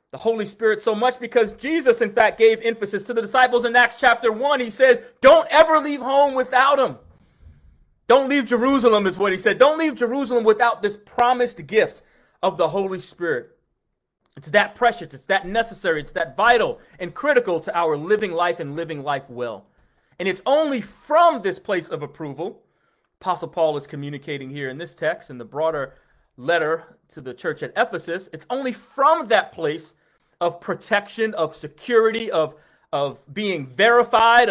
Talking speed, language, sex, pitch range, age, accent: 175 wpm, English, male, 170-250 Hz, 30-49, American